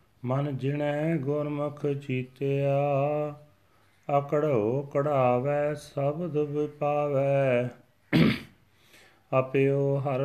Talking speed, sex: 60 wpm, male